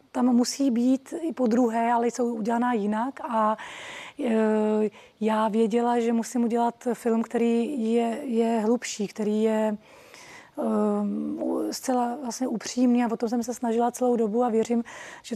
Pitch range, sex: 225-245 Hz, female